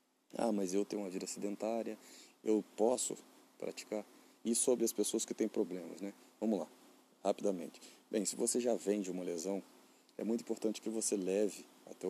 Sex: male